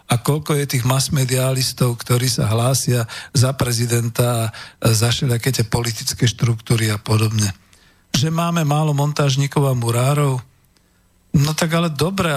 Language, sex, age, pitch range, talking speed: Slovak, male, 50-69, 115-145 Hz, 130 wpm